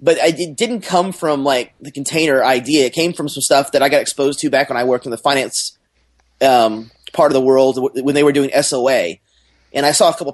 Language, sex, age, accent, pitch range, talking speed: English, male, 30-49, American, 145-195 Hz, 240 wpm